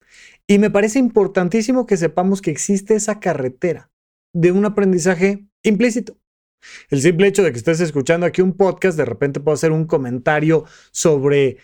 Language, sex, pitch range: Spanish, male, 150-205 Hz